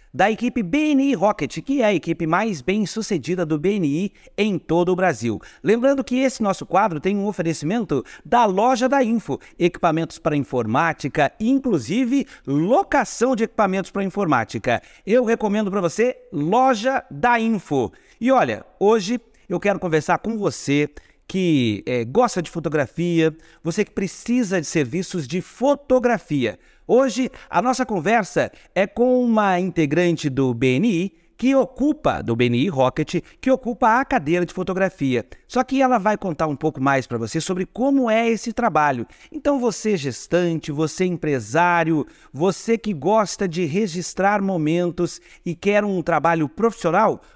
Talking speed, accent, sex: 145 wpm, Brazilian, male